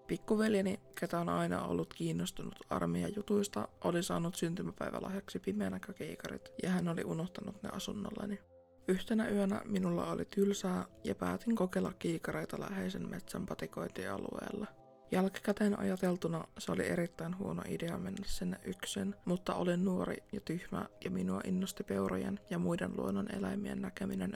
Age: 20-39